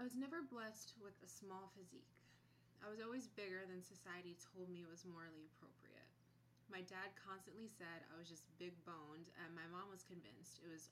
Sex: female